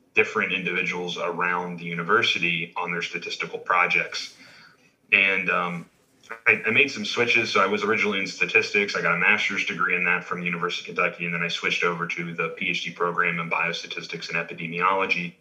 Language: English